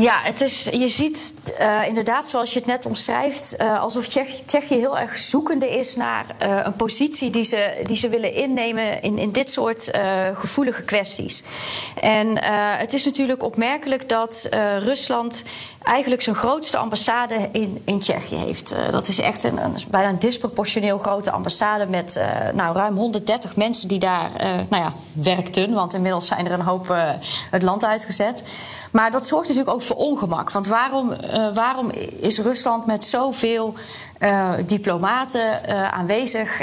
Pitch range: 200-250 Hz